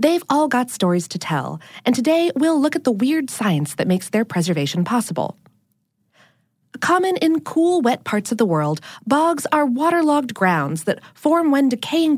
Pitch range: 170-280 Hz